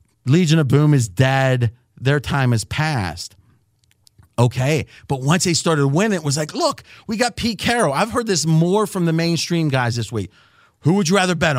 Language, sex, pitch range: English, male, 135-195 Hz